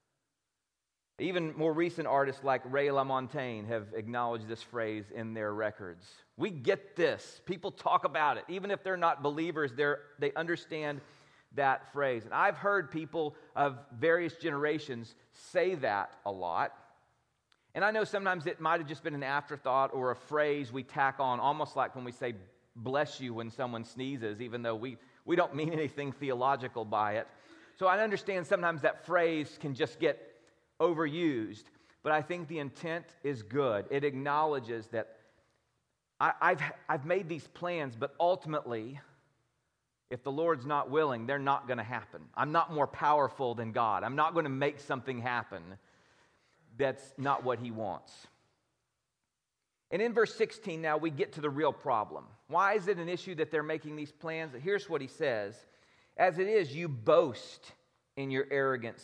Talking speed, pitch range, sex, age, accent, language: 170 wpm, 125-165 Hz, male, 40-59, American, English